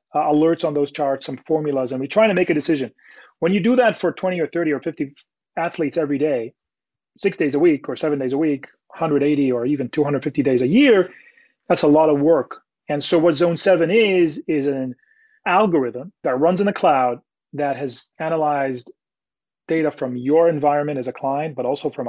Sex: male